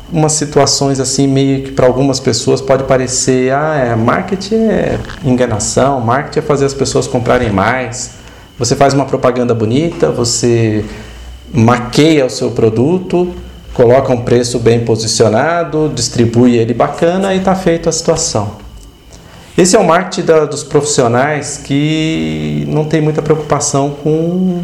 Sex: male